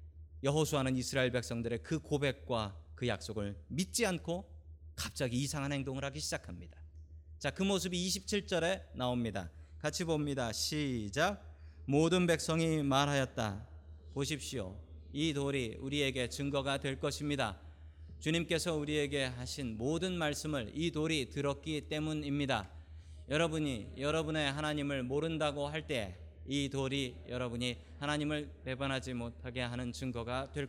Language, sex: Korean, male